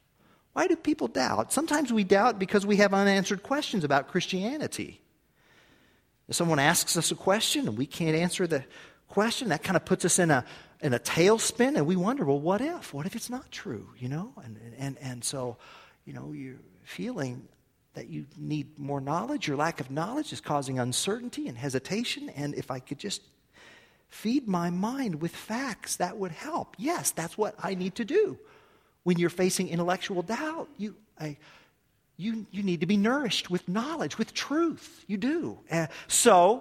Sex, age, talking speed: male, 40-59, 180 wpm